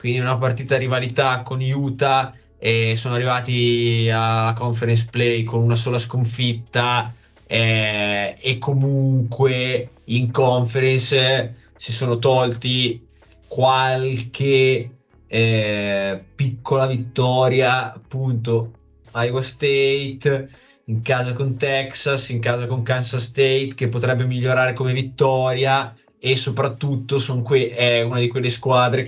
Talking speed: 110 wpm